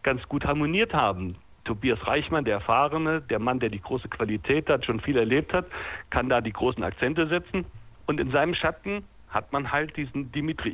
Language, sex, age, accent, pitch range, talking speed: German, male, 60-79, German, 120-160 Hz, 190 wpm